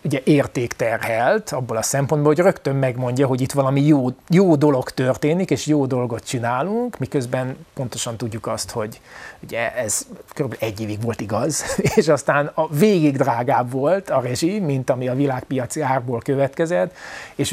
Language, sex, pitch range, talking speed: Hungarian, male, 125-155 Hz, 155 wpm